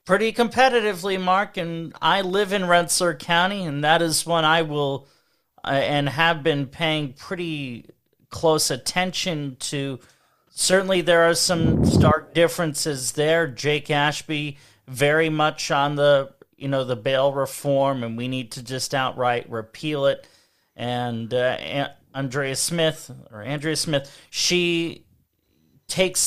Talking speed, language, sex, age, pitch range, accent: 135 wpm, English, male, 40-59, 125-155 Hz, American